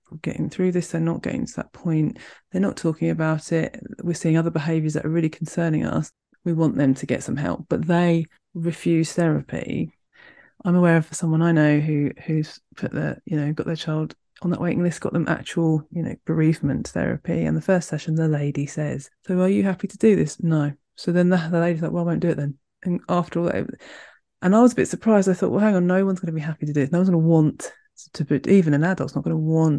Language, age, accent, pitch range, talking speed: English, 20-39, British, 155-180 Hz, 250 wpm